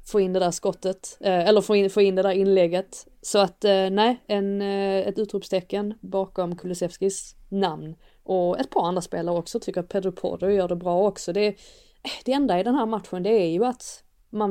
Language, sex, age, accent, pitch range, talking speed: Swedish, female, 20-39, native, 180-225 Hz, 200 wpm